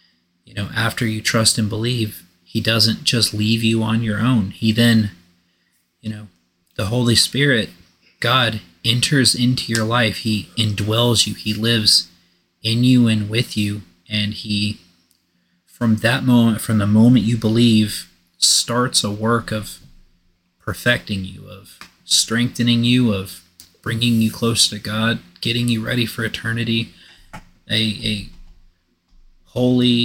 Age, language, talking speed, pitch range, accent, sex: 30-49, English, 140 wpm, 90-115 Hz, American, male